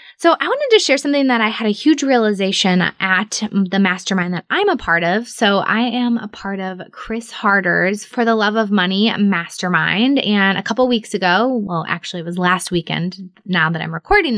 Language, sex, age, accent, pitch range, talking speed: English, female, 20-39, American, 185-225 Hz, 205 wpm